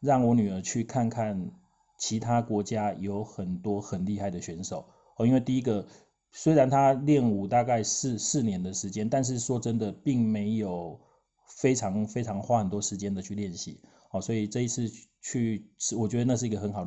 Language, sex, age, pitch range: Chinese, male, 30-49, 95-120 Hz